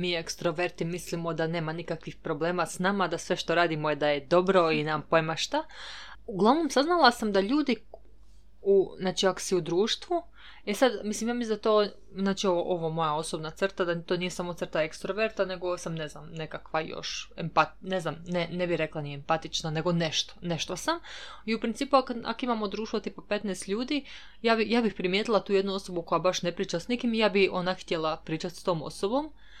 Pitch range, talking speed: 175-230 Hz, 205 wpm